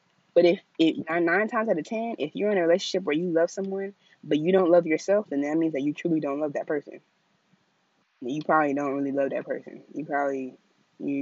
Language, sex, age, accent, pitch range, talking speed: English, female, 20-39, American, 160-220 Hz, 230 wpm